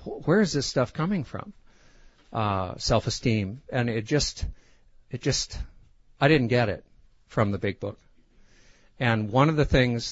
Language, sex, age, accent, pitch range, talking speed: English, male, 60-79, American, 100-130 Hz, 155 wpm